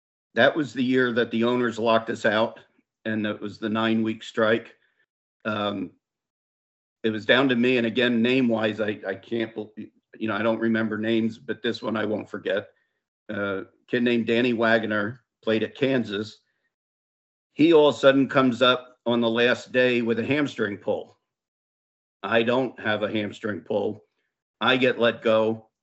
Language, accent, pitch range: English, American, 110-120 Hz